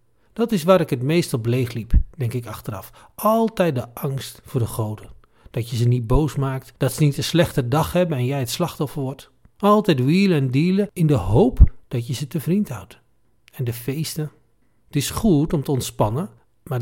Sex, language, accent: male, Dutch, Dutch